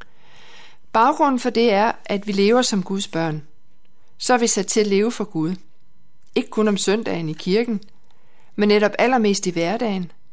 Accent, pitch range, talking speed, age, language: native, 175-225 Hz, 175 wpm, 60-79, Danish